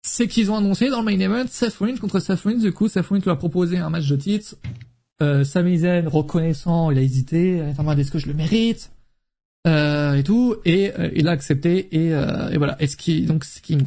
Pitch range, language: 145-185 Hz, French